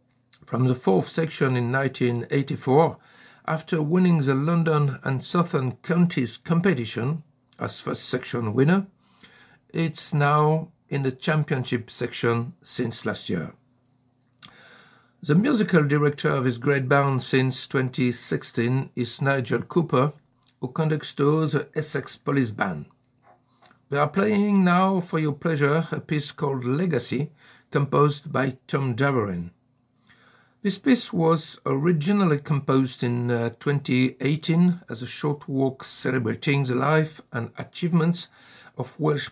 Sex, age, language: male, 60-79, English